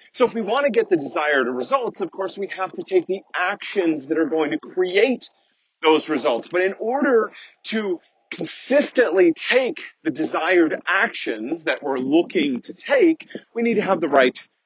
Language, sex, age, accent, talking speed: English, male, 40-59, American, 180 wpm